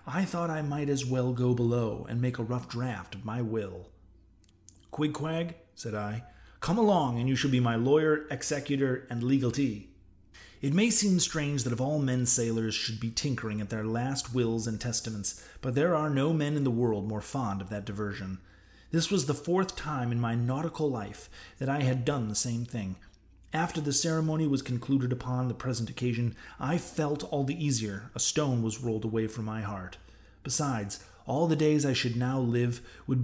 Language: English